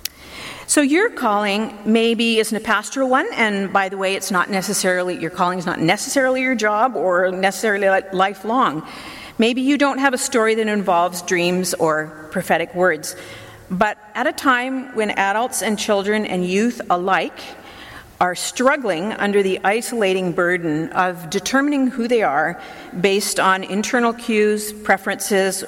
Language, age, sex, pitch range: English, 50-69, female, 185-245 Hz